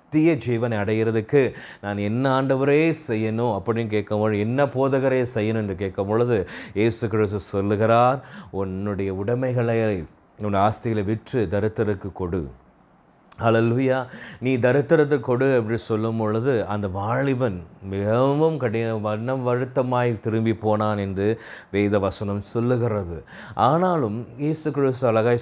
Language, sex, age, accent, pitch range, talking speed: Tamil, male, 30-49, native, 105-130 Hz, 115 wpm